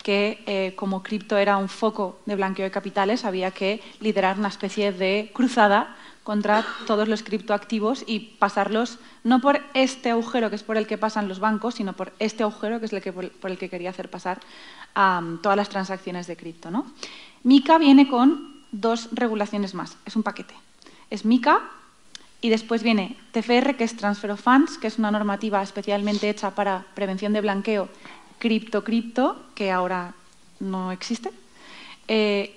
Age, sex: 30-49, female